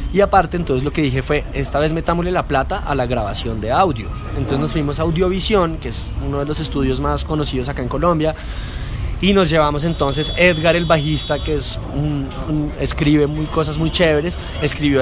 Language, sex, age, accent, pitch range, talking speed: Italian, male, 20-39, Colombian, 140-180 Hz, 200 wpm